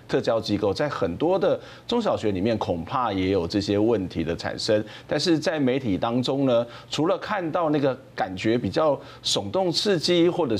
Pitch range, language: 105-160 Hz, Chinese